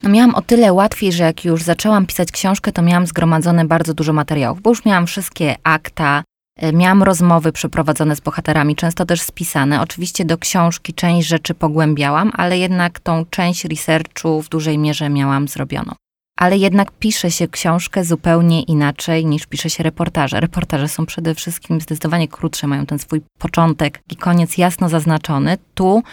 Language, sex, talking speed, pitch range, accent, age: Polish, female, 165 wpm, 160-185 Hz, native, 20-39